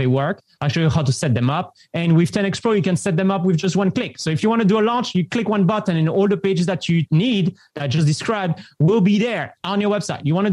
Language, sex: English, male